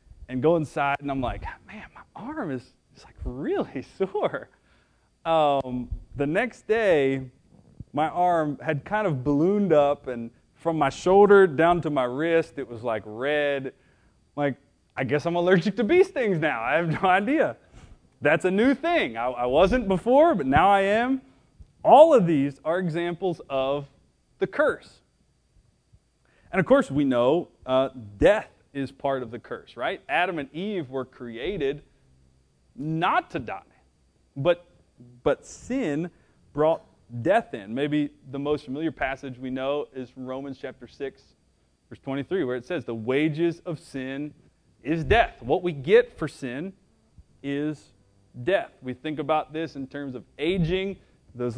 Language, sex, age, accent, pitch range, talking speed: English, male, 30-49, American, 130-175 Hz, 160 wpm